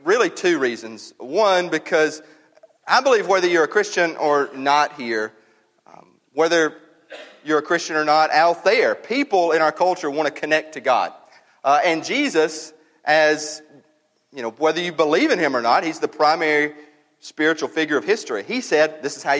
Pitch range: 135-165 Hz